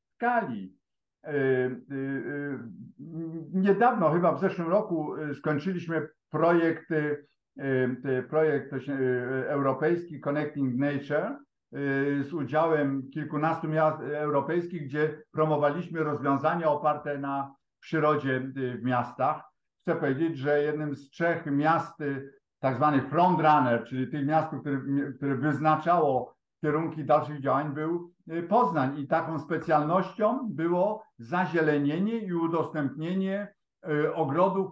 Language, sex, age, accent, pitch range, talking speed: Polish, male, 50-69, native, 145-180 Hz, 90 wpm